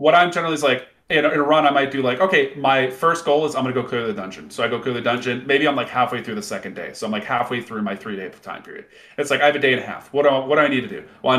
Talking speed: 340 wpm